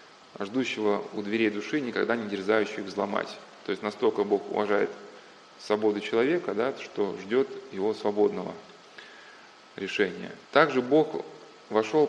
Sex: male